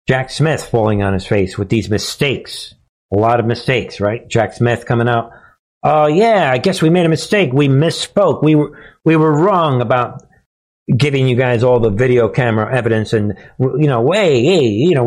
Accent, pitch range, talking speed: American, 115-145 Hz, 200 wpm